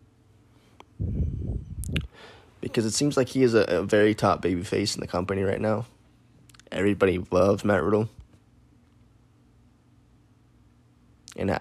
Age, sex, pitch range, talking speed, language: 20-39, male, 100-115 Hz, 115 wpm, English